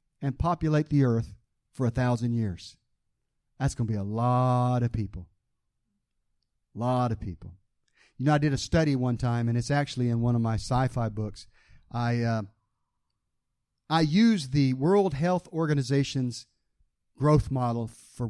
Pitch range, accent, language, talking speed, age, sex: 115-145 Hz, American, English, 155 wpm, 40-59, male